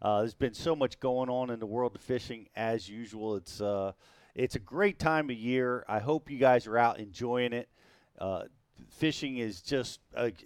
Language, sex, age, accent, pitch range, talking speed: English, male, 40-59, American, 110-140 Hz, 200 wpm